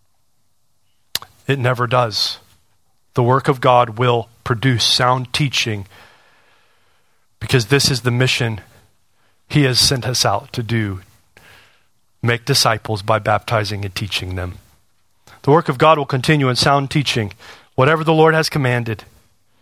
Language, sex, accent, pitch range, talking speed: English, male, American, 105-130 Hz, 135 wpm